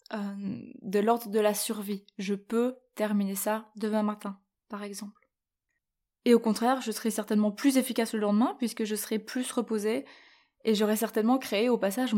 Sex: female